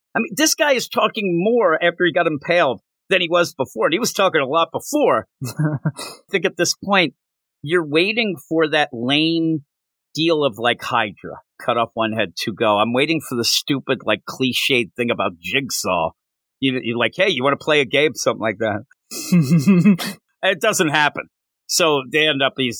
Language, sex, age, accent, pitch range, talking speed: English, male, 50-69, American, 135-200 Hz, 190 wpm